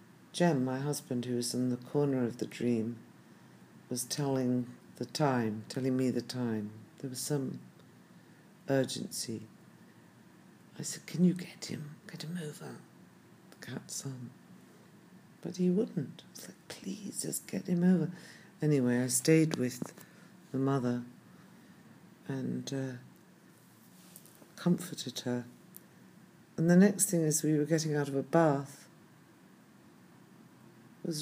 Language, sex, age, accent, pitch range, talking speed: English, female, 60-79, British, 135-180 Hz, 135 wpm